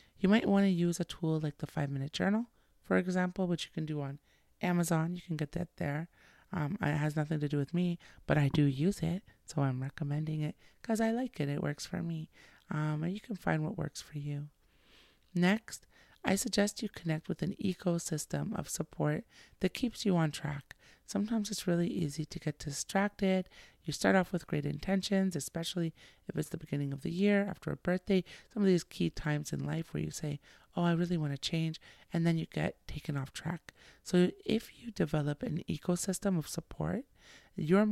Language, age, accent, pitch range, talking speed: English, 30-49, American, 150-185 Hz, 205 wpm